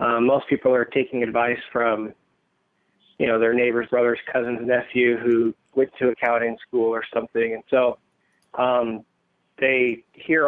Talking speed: 150 wpm